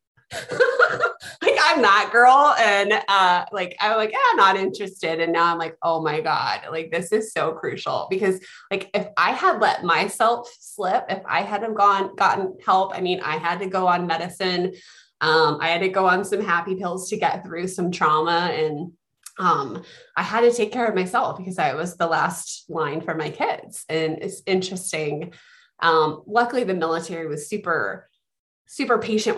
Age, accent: 20-39, American